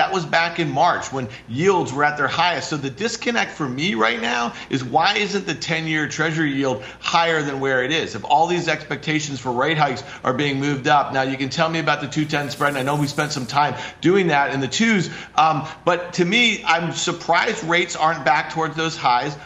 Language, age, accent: English, 40-59, American